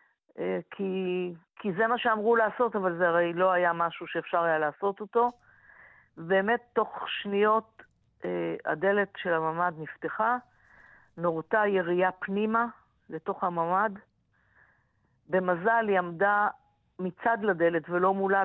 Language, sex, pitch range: Hebrew, female, 165-205 Hz